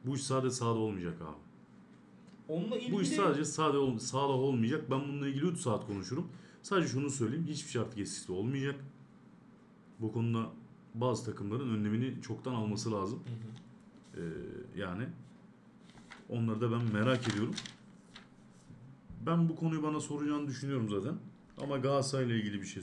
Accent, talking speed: native, 130 wpm